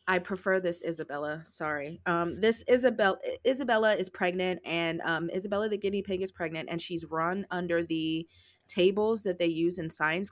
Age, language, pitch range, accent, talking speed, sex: 20-39, English, 165-190 Hz, American, 175 wpm, female